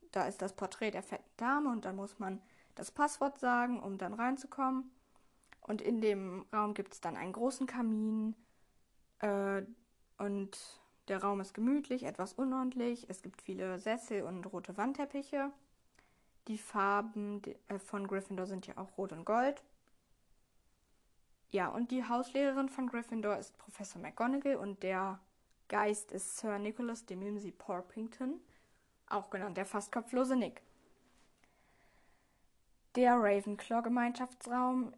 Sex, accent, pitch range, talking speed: female, German, 195-250 Hz, 130 wpm